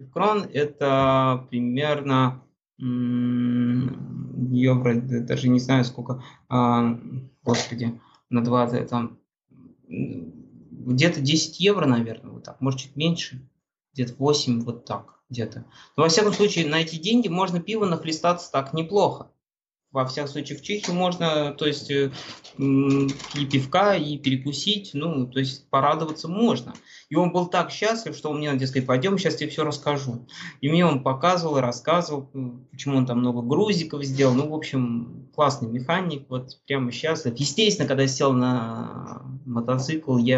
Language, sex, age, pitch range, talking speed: Russian, male, 20-39, 125-160 Hz, 145 wpm